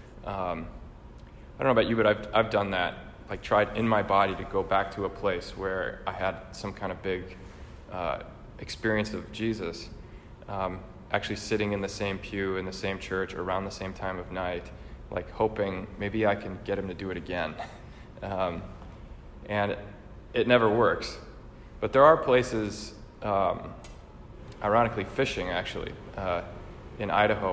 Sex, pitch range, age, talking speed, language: male, 95-110 Hz, 20-39, 170 wpm, English